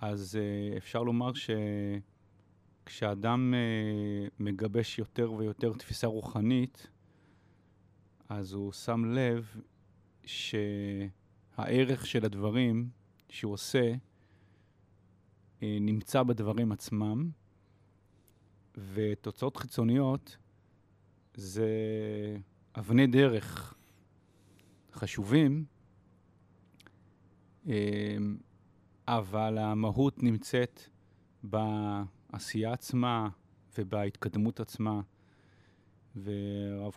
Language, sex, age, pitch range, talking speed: Hebrew, male, 30-49, 100-115 Hz, 55 wpm